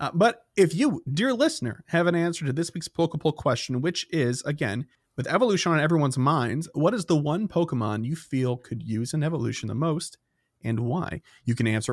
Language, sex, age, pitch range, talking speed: English, male, 30-49, 120-165 Hz, 200 wpm